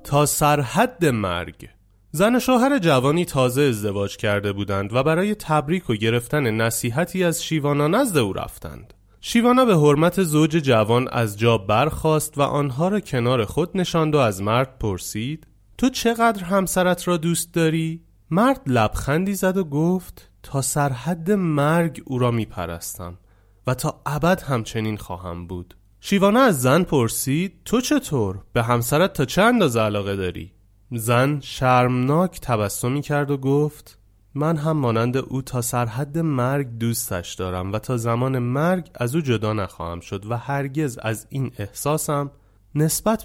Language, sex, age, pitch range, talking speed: Persian, male, 30-49, 110-160 Hz, 145 wpm